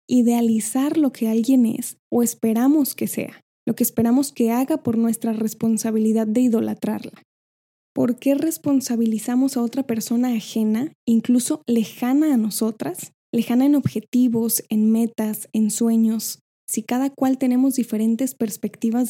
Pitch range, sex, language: 225-255 Hz, female, Spanish